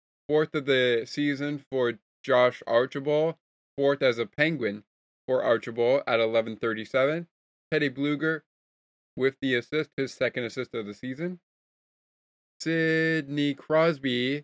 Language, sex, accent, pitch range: English, male, American, 125-155 Hz